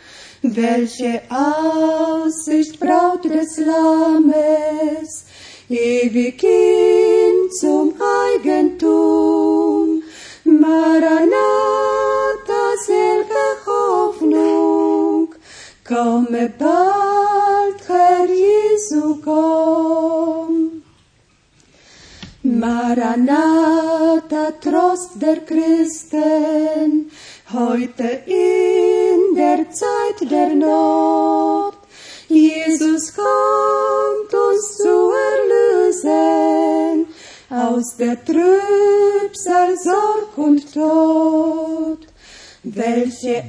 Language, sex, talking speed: Russian, female, 50 wpm